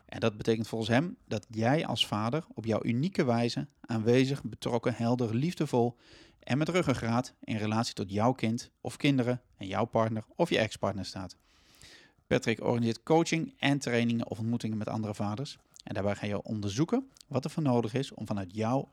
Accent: Dutch